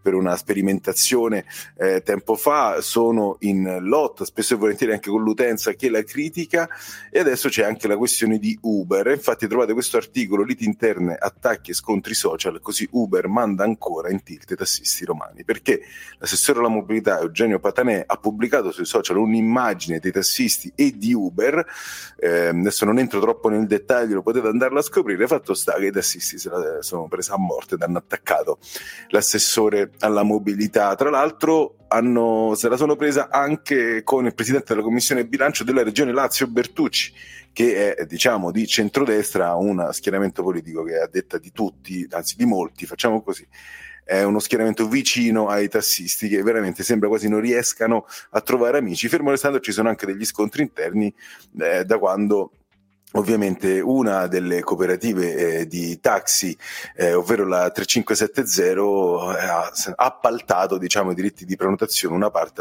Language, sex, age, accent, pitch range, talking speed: Italian, male, 30-49, native, 100-150 Hz, 165 wpm